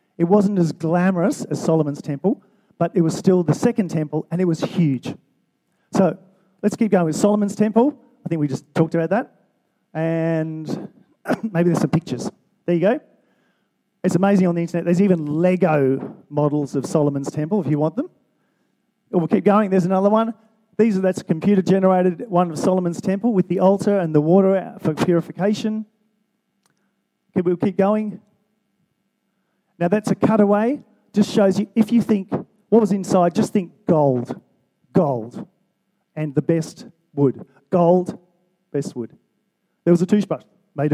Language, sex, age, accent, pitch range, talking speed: English, male, 40-59, Australian, 165-205 Hz, 165 wpm